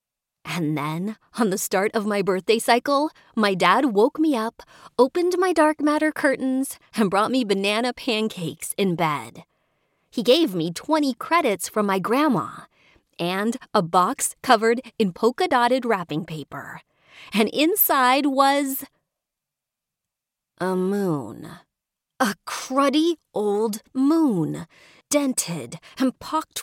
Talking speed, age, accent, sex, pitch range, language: 120 wpm, 30-49, American, female, 165-250 Hz, English